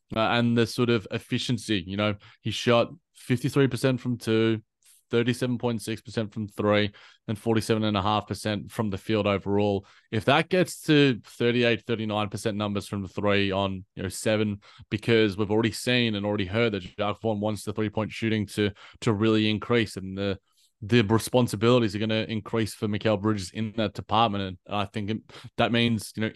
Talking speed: 200 wpm